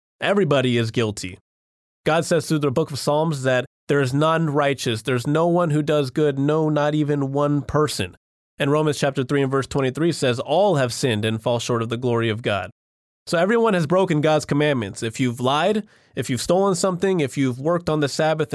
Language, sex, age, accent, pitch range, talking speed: English, male, 20-39, American, 125-165 Hz, 205 wpm